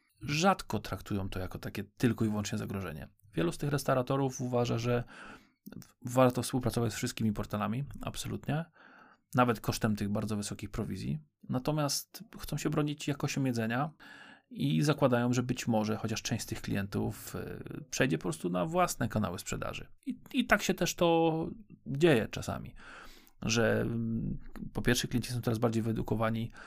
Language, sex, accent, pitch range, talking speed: Polish, male, native, 110-135 Hz, 150 wpm